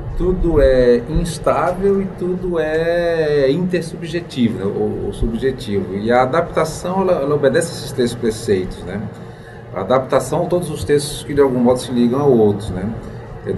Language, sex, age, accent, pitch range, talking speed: Portuguese, male, 40-59, Brazilian, 115-155 Hz, 160 wpm